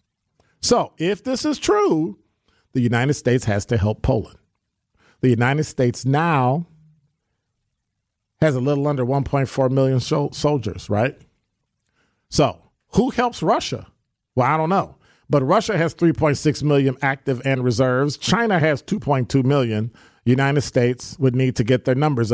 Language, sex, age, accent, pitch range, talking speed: English, male, 40-59, American, 115-155 Hz, 140 wpm